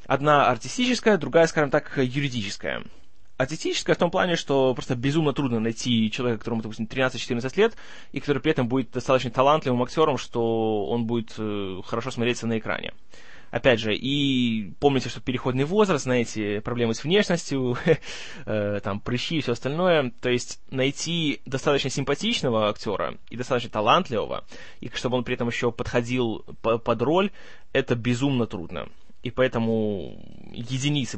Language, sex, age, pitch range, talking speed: Russian, male, 20-39, 115-140 Hz, 150 wpm